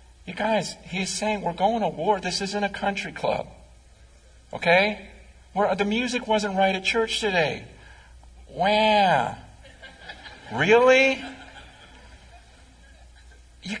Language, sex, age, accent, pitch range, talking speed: English, male, 50-69, American, 130-220 Hz, 110 wpm